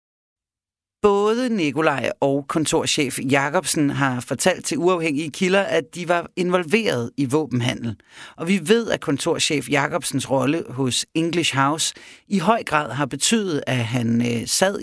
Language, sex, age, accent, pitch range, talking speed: Danish, male, 40-59, native, 130-185 Hz, 140 wpm